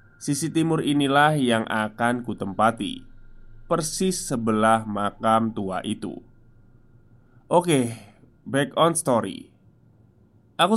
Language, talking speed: Indonesian, 90 wpm